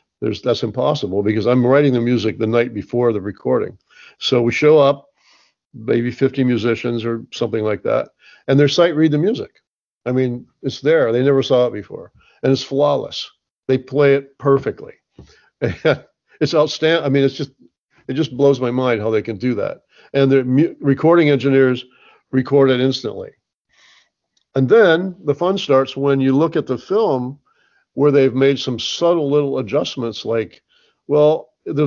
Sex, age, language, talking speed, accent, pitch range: male, 50-69, English, 170 wpm, American, 125-150 Hz